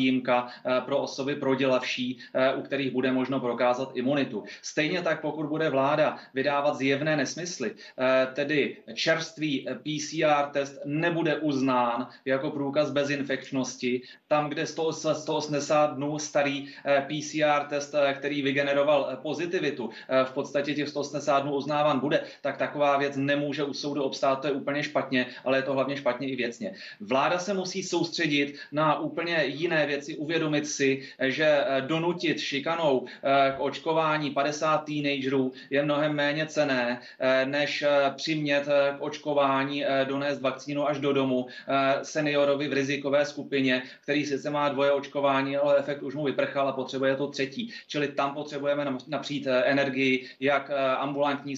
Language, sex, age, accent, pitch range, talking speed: Czech, male, 30-49, native, 135-145 Hz, 135 wpm